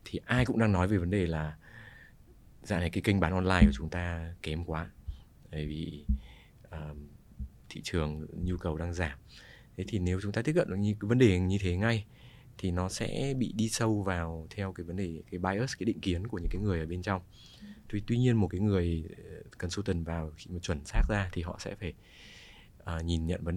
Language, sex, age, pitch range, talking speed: Vietnamese, male, 20-39, 85-100 Hz, 215 wpm